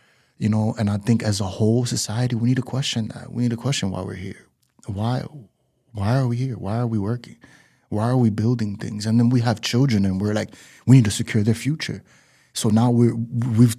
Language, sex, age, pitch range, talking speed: English, male, 30-49, 105-130 Hz, 230 wpm